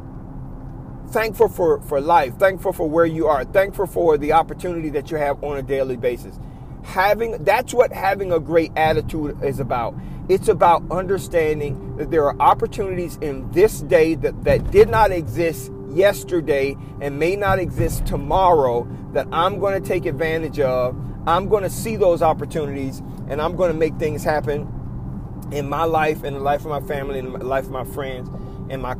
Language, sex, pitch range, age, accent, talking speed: English, male, 140-175 Hz, 40-59, American, 180 wpm